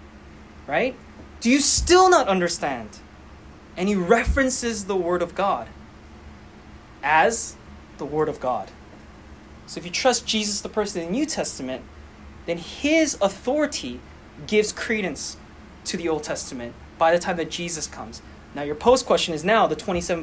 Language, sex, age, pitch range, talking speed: English, male, 20-39, 155-235 Hz, 155 wpm